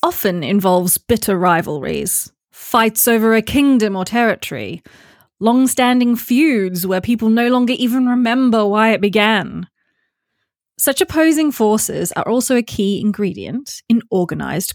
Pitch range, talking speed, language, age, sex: 200-255 Hz, 125 wpm, English, 20-39, female